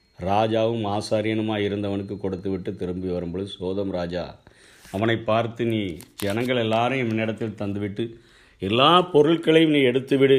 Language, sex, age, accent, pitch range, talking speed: Tamil, male, 50-69, native, 100-130 Hz, 115 wpm